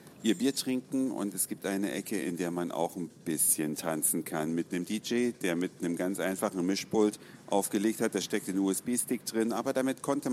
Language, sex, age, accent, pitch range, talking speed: German, male, 50-69, German, 85-110 Hz, 205 wpm